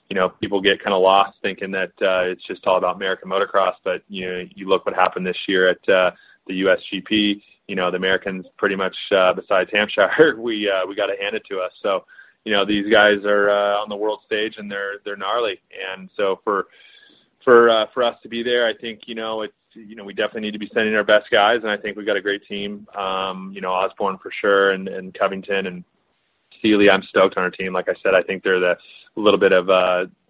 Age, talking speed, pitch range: 20-39, 250 wpm, 95-105 Hz